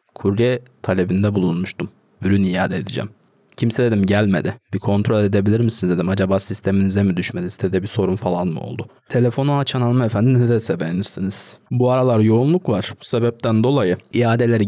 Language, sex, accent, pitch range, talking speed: Turkish, male, native, 100-125 Hz, 155 wpm